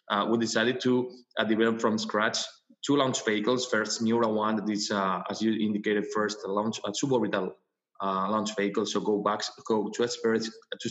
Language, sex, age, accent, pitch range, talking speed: English, male, 20-39, Spanish, 105-120 Hz, 195 wpm